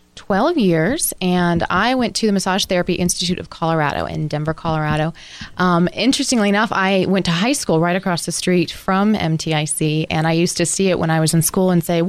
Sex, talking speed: female, 210 wpm